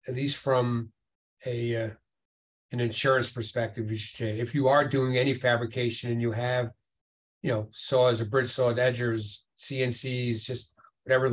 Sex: male